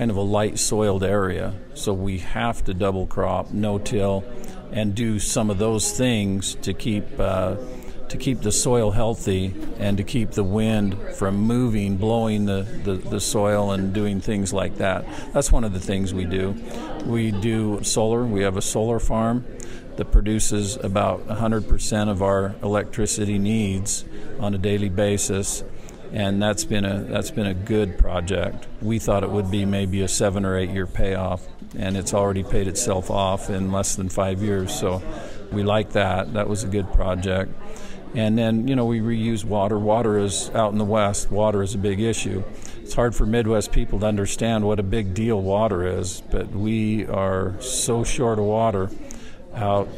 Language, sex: English, male